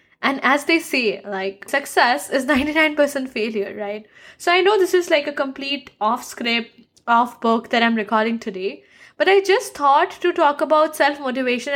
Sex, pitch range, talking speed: female, 230-315 Hz, 175 wpm